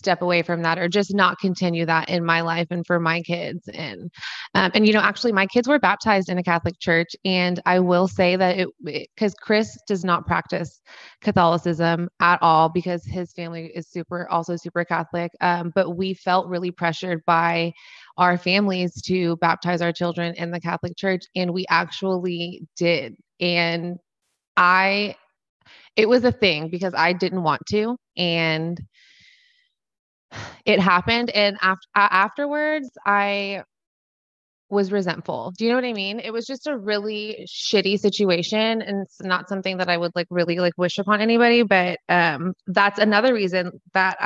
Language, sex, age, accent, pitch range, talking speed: English, female, 20-39, American, 175-200 Hz, 170 wpm